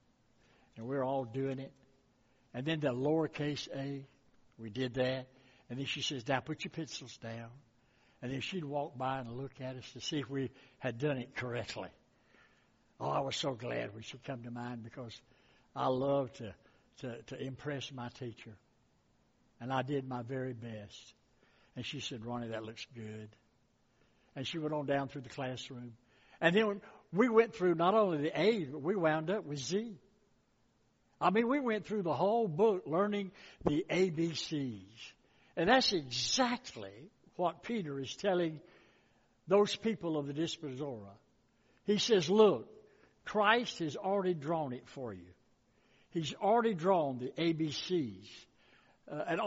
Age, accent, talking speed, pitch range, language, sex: 60-79, American, 165 wpm, 125-190 Hz, English, male